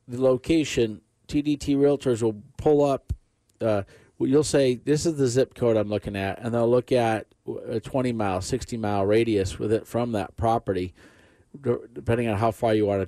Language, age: English, 40-59